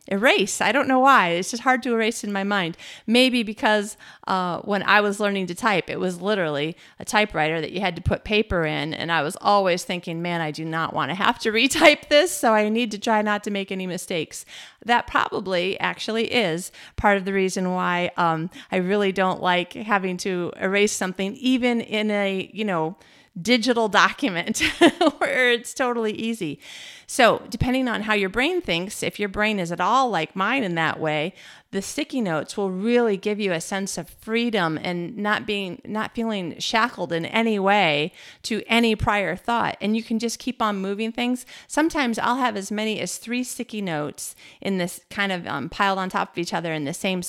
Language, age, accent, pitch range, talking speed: English, 40-59, American, 180-230 Hz, 205 wpm